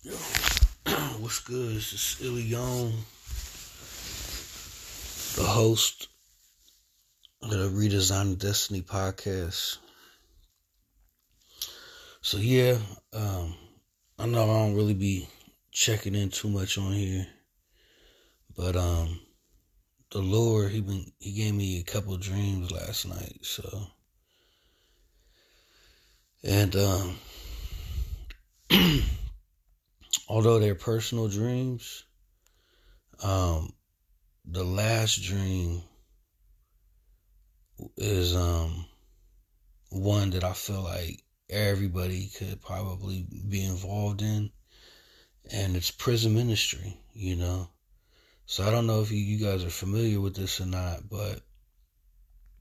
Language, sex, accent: English, male, American